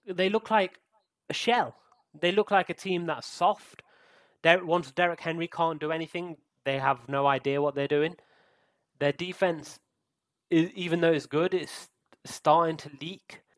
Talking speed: 165 wpm